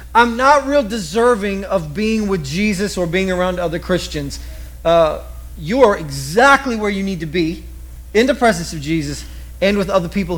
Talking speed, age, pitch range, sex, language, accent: 175 wpm, 40-59, 155-230 Hz, male, English, American